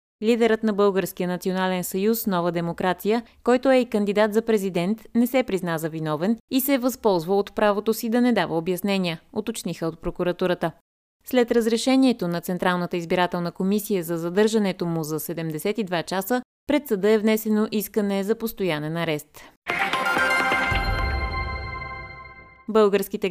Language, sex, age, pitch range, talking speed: Bulgarian, female, 20-39, 175-225 Hz, 135 wpm